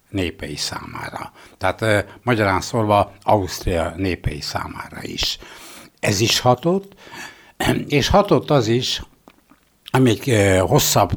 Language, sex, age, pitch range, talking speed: Hungarian, male, 60-79, 95-120 Hz, 95 wpm